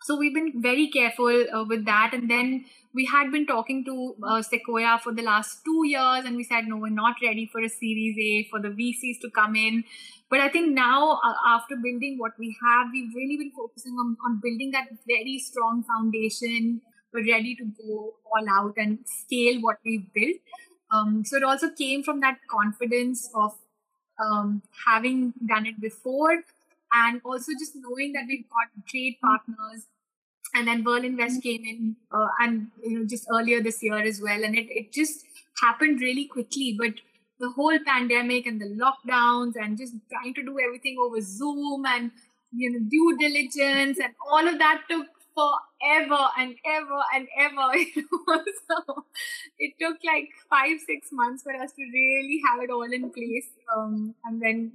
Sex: female